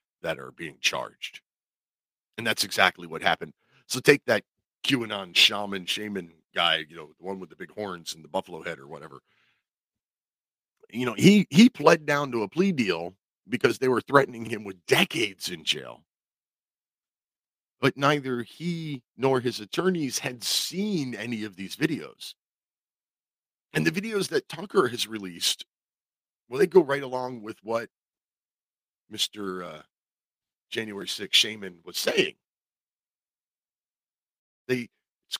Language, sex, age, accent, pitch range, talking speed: English, male, 40-59, American, 100-150 Hz, 140 wpm